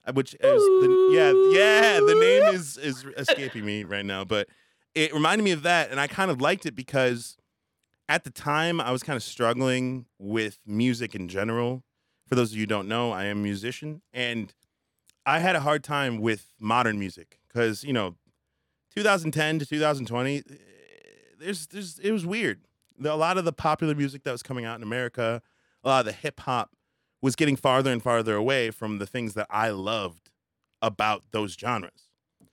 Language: English